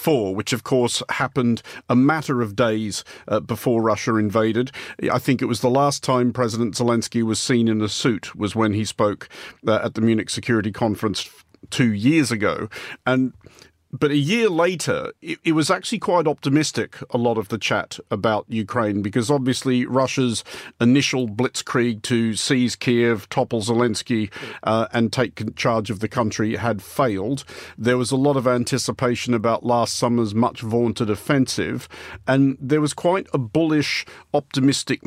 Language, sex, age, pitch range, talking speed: English, male, 50-69, 115-135 Hz, 160 wpm